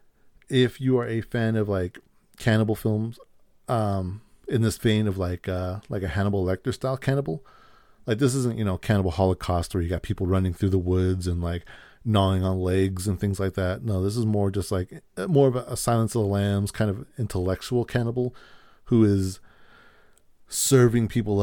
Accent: American